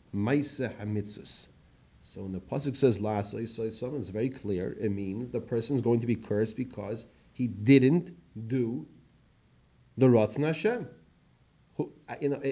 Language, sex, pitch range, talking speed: English, male, 115-155 Hz, 130 wpm